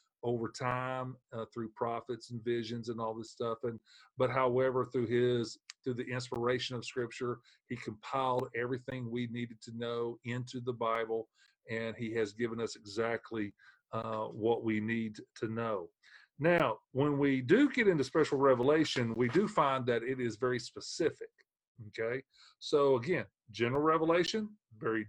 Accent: American